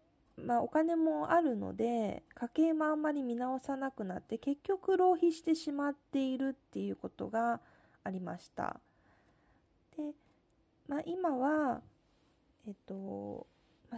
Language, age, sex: Japanese, 20-39, female